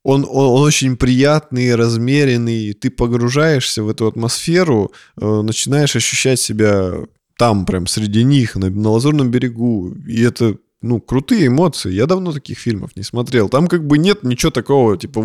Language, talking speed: Russian, 160 wpm